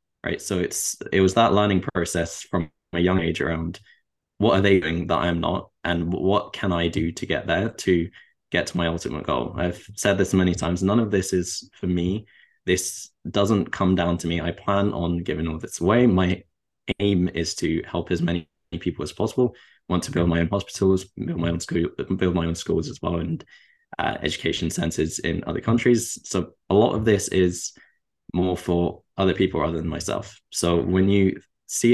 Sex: male